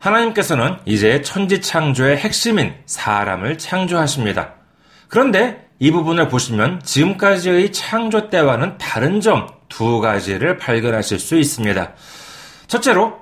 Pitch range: 125-190 Hz